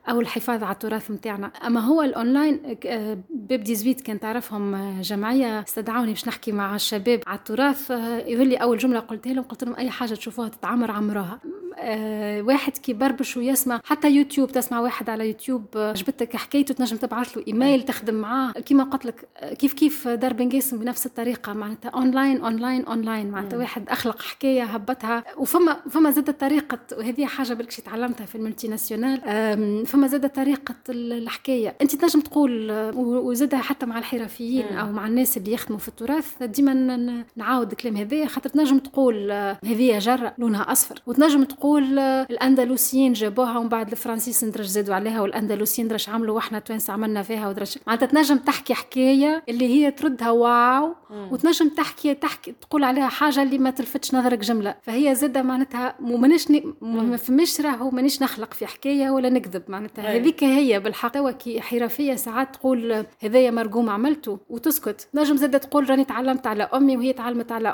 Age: 20-39